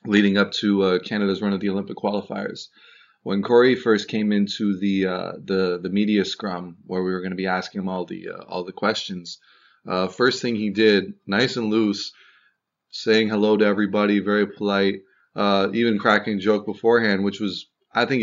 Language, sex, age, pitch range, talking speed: English, male, 20-39, 100-115 Hz, 195 wpm